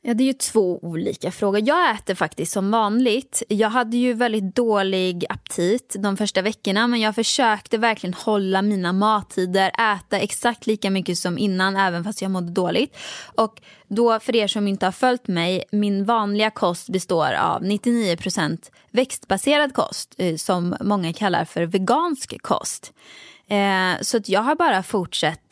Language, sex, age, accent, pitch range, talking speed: Swedish, female, 20-39, native, 185-230 Hz, 160 wpm